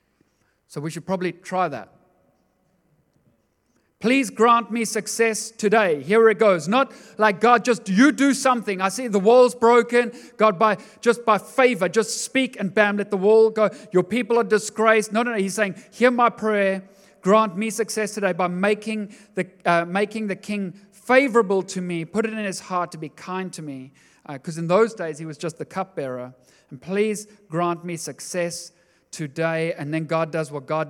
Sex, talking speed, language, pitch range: male, 190 wpm, English, 160-215 Hz